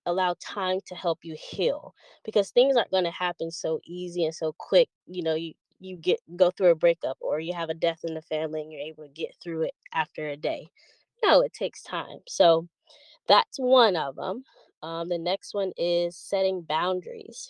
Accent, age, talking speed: American, 20-39, 205 wpm